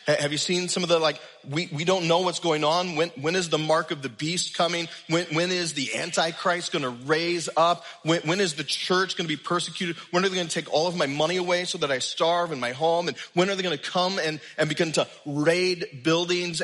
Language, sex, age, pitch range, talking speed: English, male, 30-49, 155-205 Hz, 260 wpm